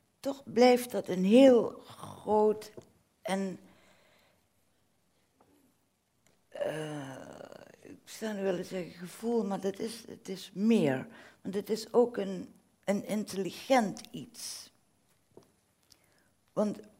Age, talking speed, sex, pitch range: 60-79, 100 wpm, female, 140-195 Hz